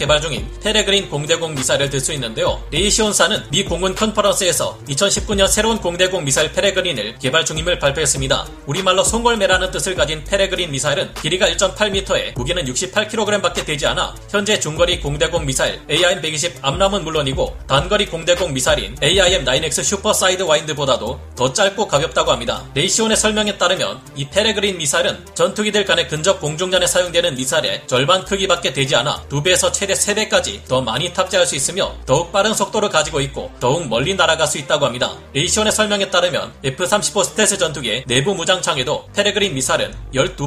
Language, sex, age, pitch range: Korean, male, 30-49, 145-200 Hz